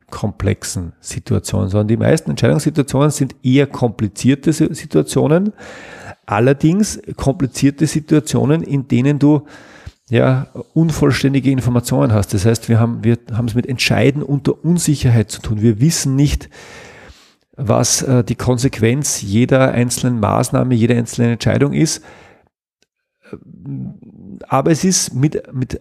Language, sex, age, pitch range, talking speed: German, male, 40-59, 115-145 Hz, 120 wpm